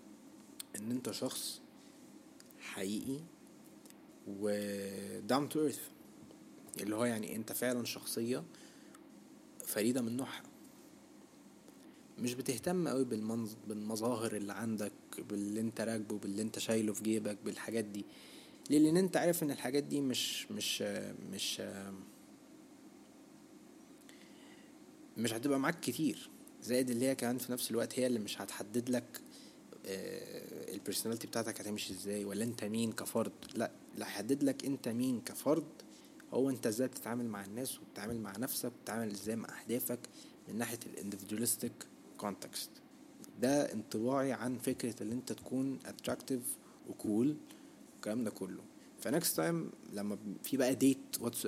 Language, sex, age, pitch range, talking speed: Arabic, male, 20-39, 110-145 Hz, 130 wpm